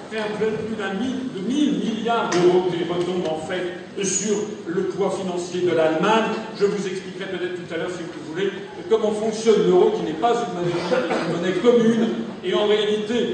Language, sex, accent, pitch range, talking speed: French, male, French, 190-235 Hz, 200 wpm